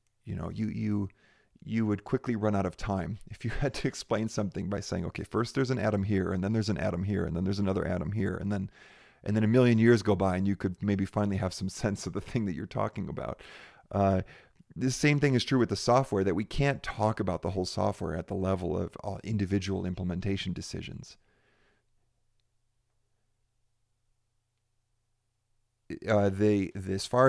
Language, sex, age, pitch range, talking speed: English, male, 40-59, 95-110 Hz, 195 wpm